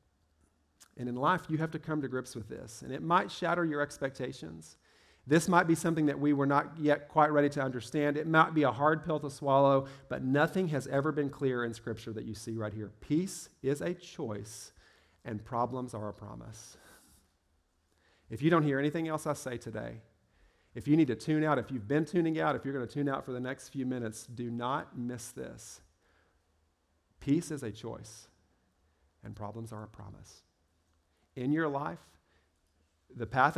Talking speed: 195 wpm